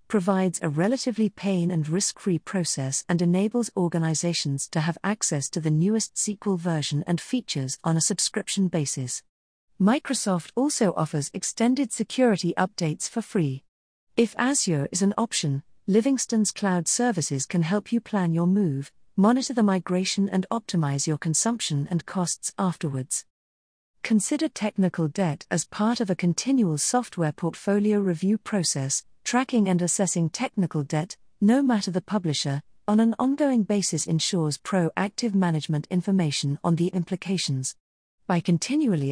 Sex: female